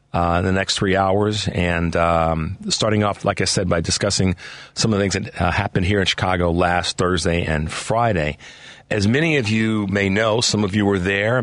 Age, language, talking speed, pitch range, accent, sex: 40-59, English, 205 wpm, 90-105 Hz, American, male